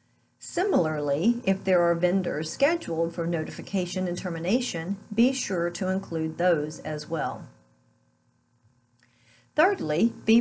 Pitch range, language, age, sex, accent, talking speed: 160-215 Hz, English, 50-69, female, American, 110 wpm